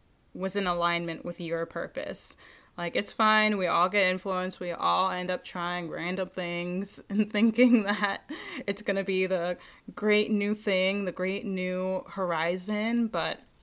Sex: female